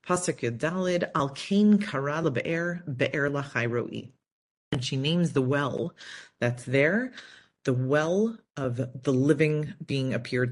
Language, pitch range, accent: English, 130-160 Hz, American